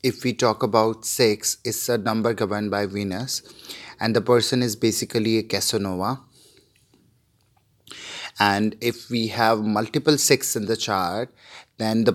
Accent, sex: Indian, male